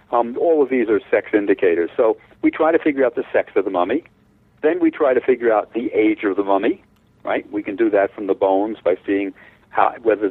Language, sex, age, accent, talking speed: English, male, 50-69, American, 235 wpm